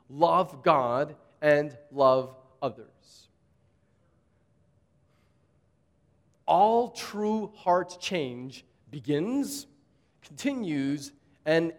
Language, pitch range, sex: English, 135-210 Hz, male